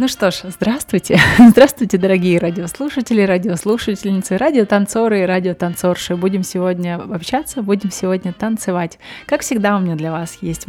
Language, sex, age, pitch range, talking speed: Russian, female, 20-39, 180-230 Hz, 135 wpm